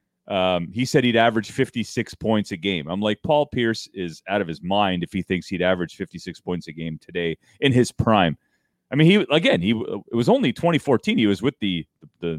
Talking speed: 220 wpm